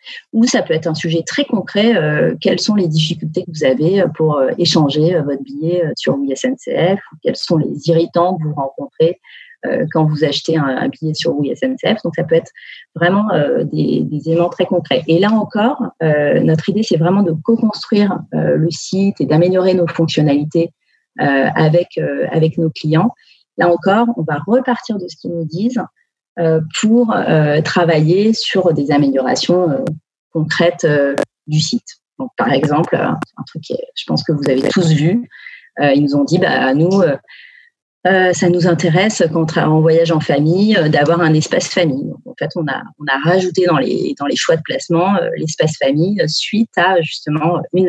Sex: female